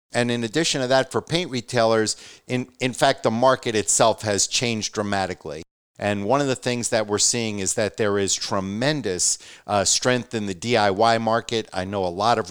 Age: 50-69